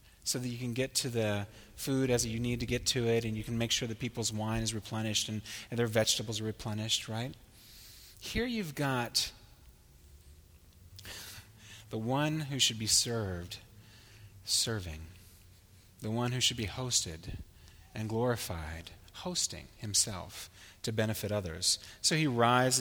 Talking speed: 155 wpm